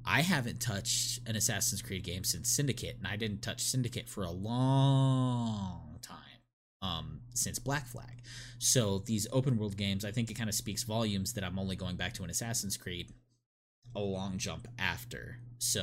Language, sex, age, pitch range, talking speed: English, male, 20-39, 100-120 Hz, 180 wpm